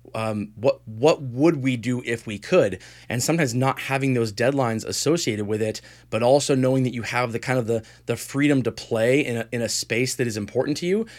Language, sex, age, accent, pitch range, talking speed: English, male, 20-39, American, 115-135 Hz, 225 wpm